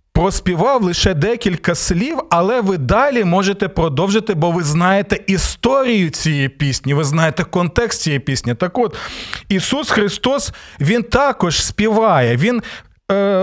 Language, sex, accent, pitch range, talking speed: Ukrainian, male, native, 155-220 Hz, 130 wpm